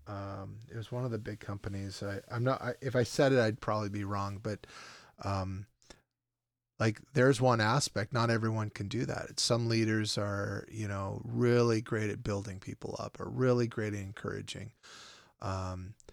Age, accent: 30-49, American